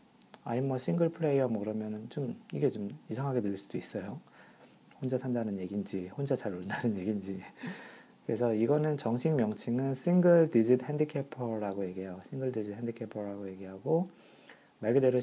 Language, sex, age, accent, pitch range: Korean, male, 40-59, native, 110-165 Hz